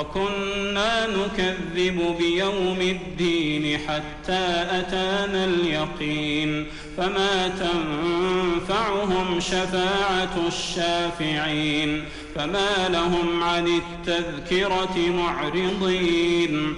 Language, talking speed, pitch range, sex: Arabic, 55 wpm, 165-190 Hz, male